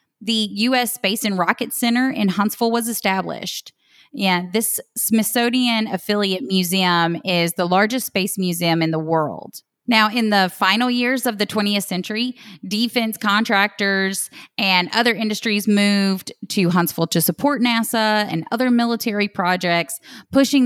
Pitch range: 170-210 Hz